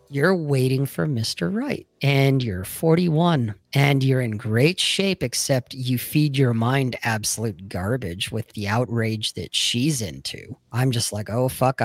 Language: English